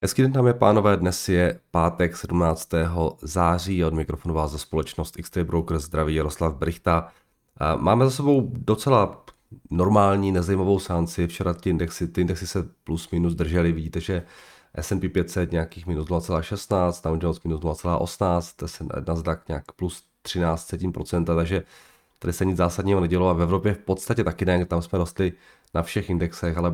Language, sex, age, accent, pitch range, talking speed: Czech, male, 30-49, native, 85-95 Hz, 160 wpm